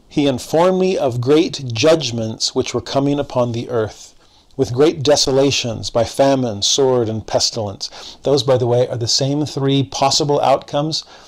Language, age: English, 40-59